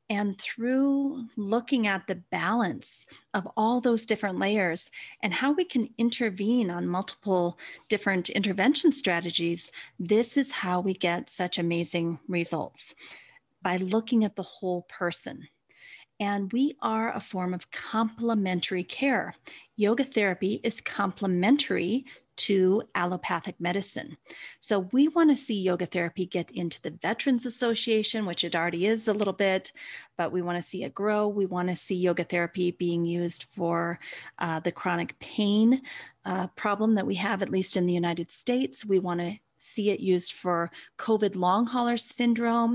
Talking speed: 150 wpm